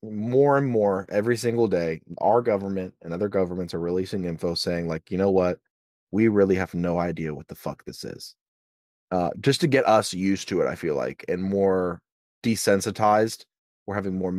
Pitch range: 95-115 Hz